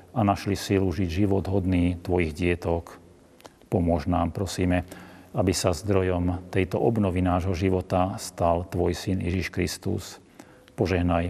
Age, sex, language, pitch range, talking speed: 40-59, male, Slovak, 90-95 Hz, 125 wpm